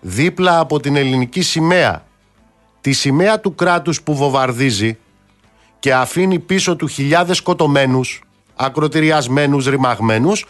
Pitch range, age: 110-170 Hz, 50-69